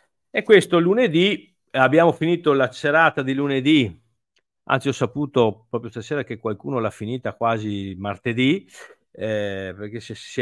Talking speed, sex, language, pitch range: 130 wpm, male, Italian, 100-135 Hz